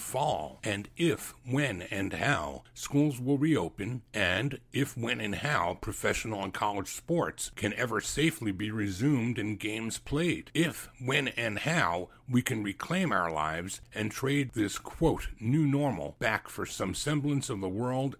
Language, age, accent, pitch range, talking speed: English, 60-79, American, 95-135 Hz, 160 wpm